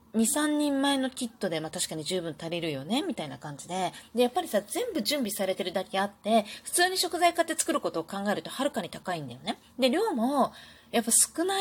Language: Japanese